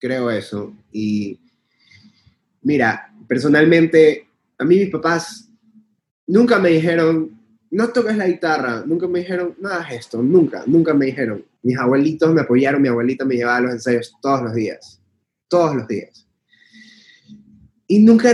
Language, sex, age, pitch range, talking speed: Spanish, male, 20-39, 120-170 Hz, 145 wpm